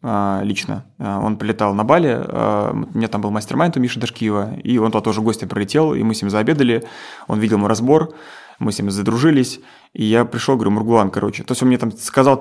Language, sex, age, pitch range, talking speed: Russian, male, 20-39, 110-135 Hz, 225 wpm